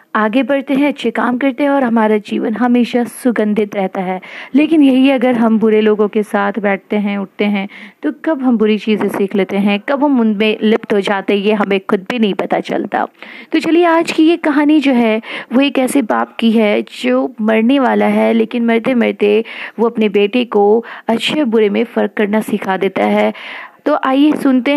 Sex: female